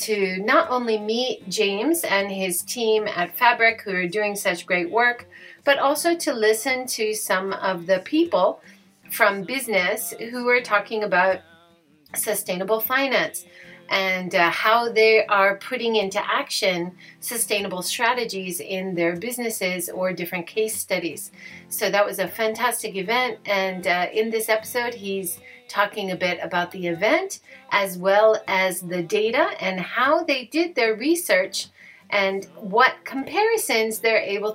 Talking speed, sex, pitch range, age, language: 145 wpm, female, 190-240 Hz, 40-59, English